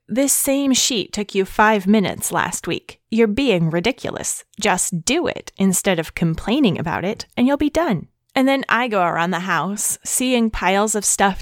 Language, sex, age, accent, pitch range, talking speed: English, female, 20-39, American, 175-230 Hz, 185 wpm